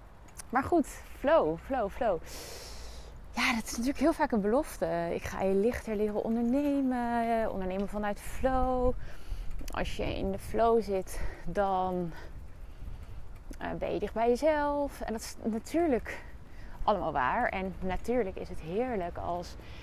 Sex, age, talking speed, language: female, 20-39, 140 wpm, Dutch